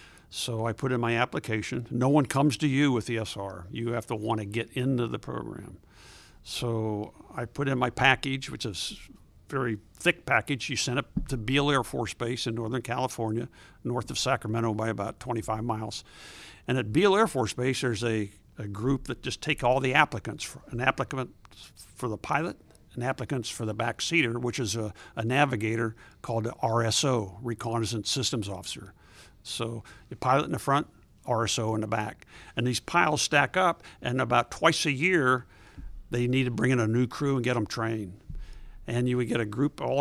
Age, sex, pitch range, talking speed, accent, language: 60-79, male, 115-135 Hz, 195 wpm, American, English